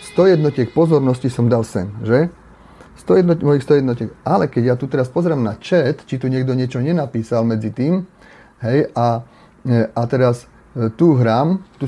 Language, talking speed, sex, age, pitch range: Slovak, 165 wpm, male, 30-49, 125-170 Hz